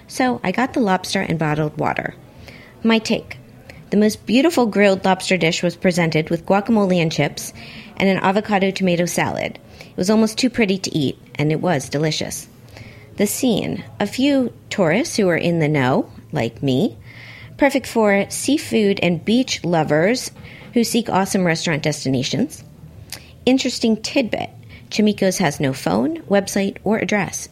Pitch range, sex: 155-220 Hz, female